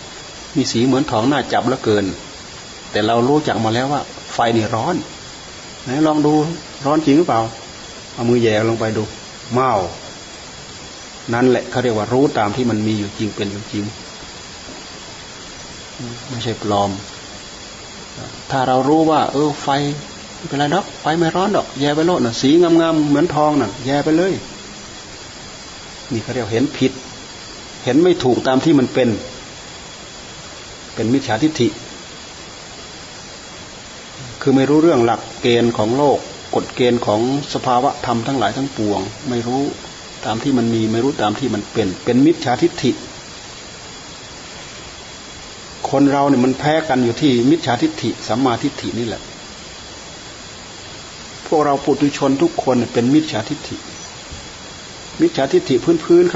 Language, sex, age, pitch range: Thai, male, 30-49, 115-150 Hz